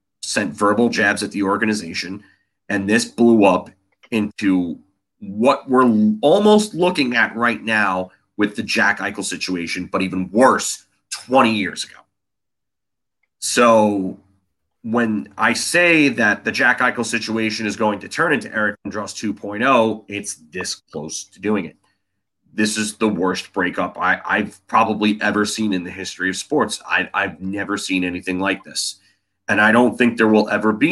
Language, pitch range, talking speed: English, 100-120 Hz, 155 wpm